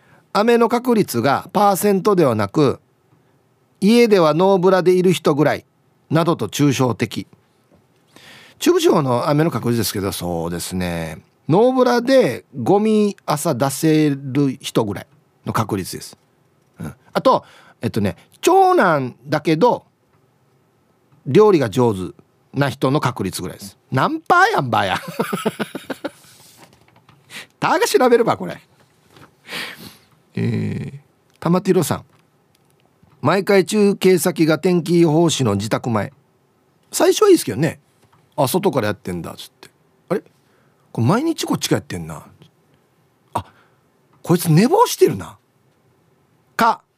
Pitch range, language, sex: 130-195 Hz, Japanese, male